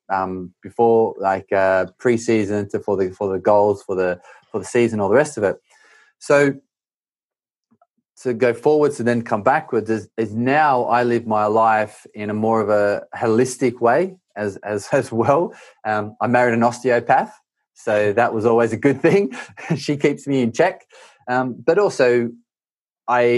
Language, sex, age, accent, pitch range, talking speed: English, male, 20-39, Australian, 110-140 Hz, 175 wpm